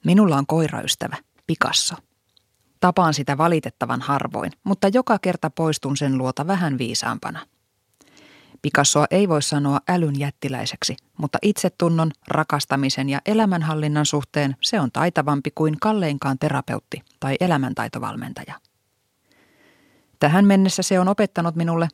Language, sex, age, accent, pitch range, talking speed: Finnish, female, 30-49, native, 140-180 Hz, 110 wpm